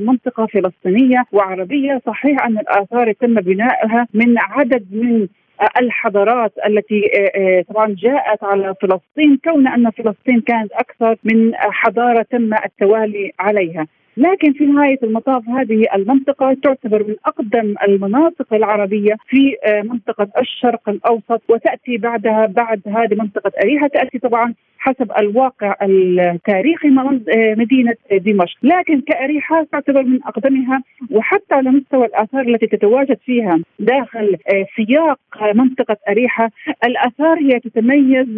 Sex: female